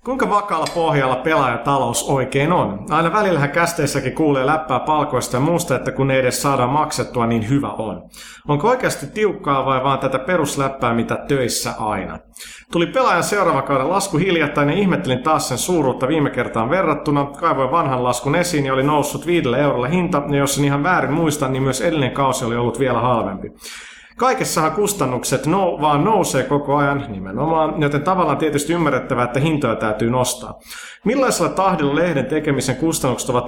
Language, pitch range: Finnish, 125-160 Hz